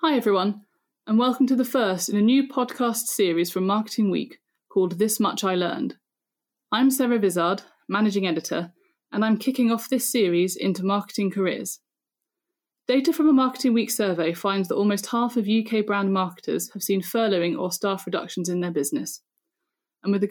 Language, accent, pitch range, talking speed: English, British, 195-250 Hz, 175 wpm